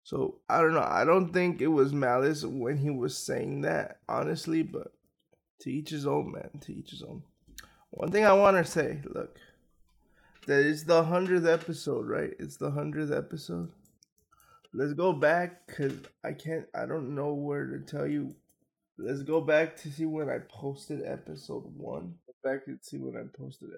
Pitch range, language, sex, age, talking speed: 140-170 Hz, English, male, 20-39, 185 wpm